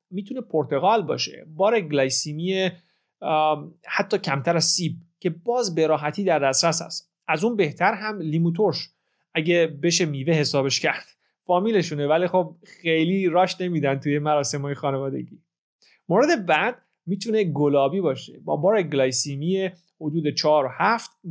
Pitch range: 145-185 Hz